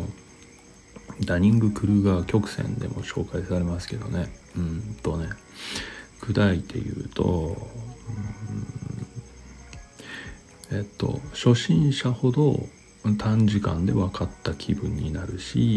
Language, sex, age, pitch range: Japanese, male, 40-59, 95-115 Hz